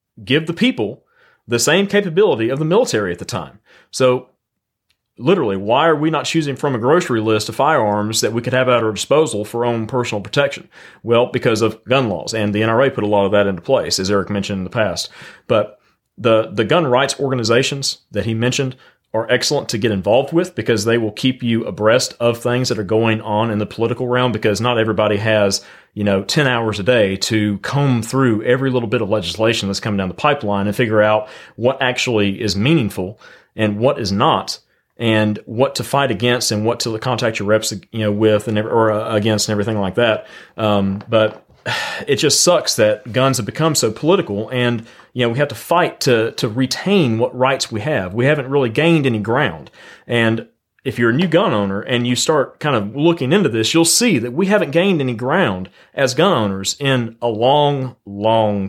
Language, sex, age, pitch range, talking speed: English, male, 40-59, 105-135 Hz, 210 wpm